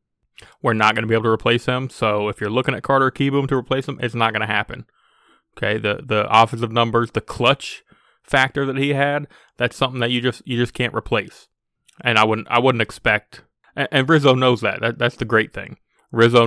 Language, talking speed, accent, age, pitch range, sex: English, 220 wpm, American, 20-39, 110-130 Hz, male